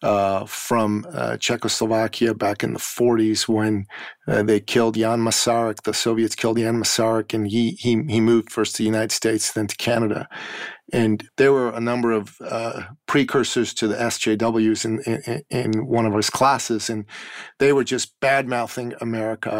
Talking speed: 175 wpm